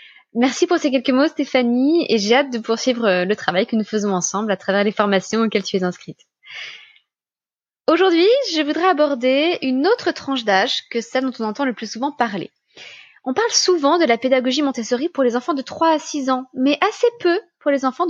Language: French